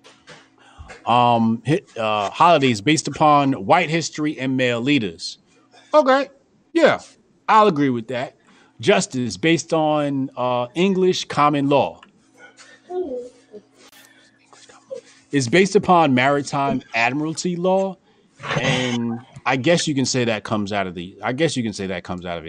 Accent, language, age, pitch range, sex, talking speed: American, English, 30-49, 110-155 Hz, male, 135 wpm